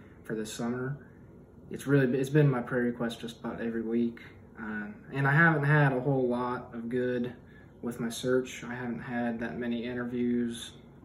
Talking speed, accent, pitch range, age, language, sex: 180 wpm, American, 115-130 Hz, 20-39, English, male